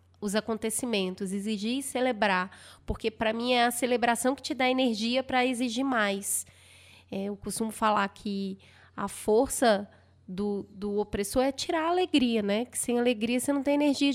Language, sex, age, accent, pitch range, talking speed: Portuguese, female, 20-39, Brazilian, 195-235 Hz, 165 wpm